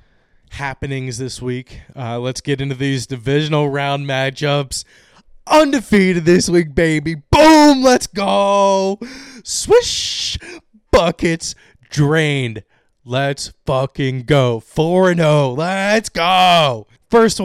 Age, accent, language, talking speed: 20-39, American, English, 95 wpm